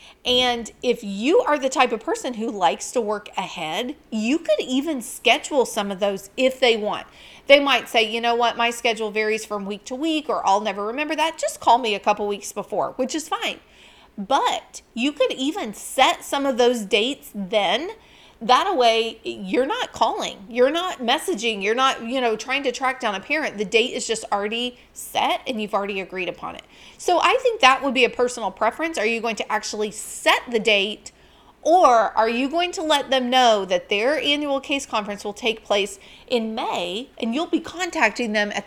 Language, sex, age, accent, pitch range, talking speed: English, female, 40-59, American, 215-280 Hz, 205 wpm